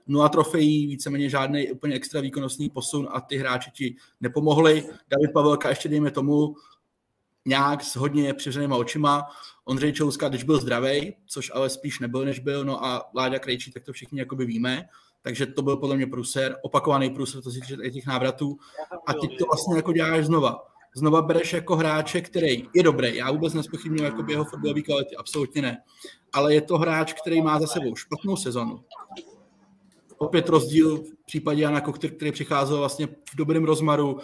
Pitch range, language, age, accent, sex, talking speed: 135-155 Hz, Czech, 20-39, native, male, 175 wpm